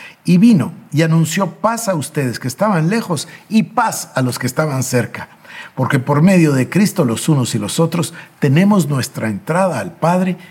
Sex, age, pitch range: male, 50-69, 125-180 Hz